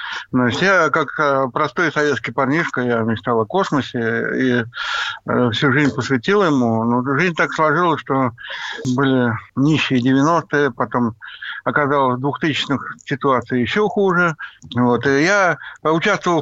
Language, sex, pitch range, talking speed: Russian, male, 130-160 Hz, 130 wpm